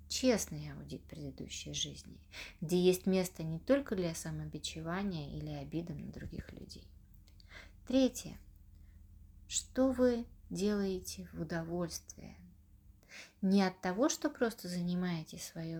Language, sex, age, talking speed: Russian, female, 30-49, 110 wpm